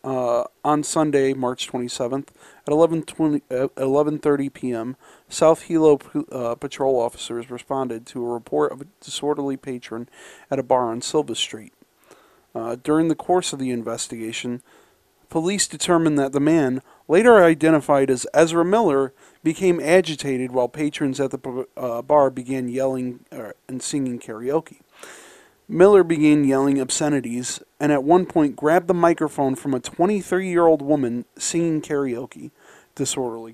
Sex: male